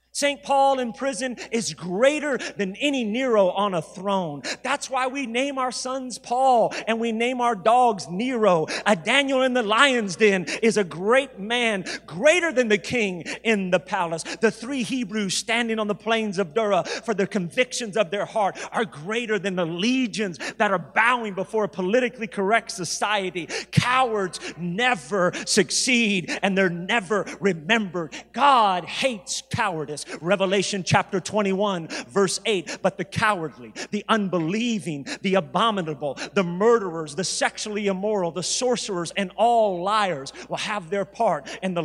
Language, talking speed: English, 155 wpm